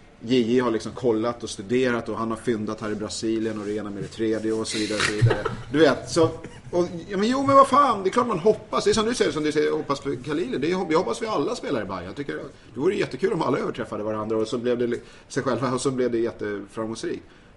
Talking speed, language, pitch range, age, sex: 255 wpm, English, 115-170 Hz, 30-49, male